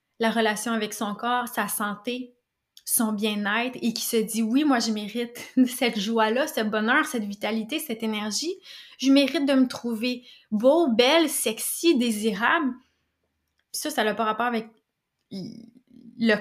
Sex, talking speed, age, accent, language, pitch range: female, 155 wpm, 20-39, Canadian, French, 215-250 Hz